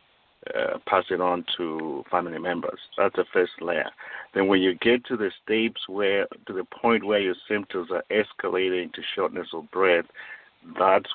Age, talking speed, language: 50-69, 165 wpm, English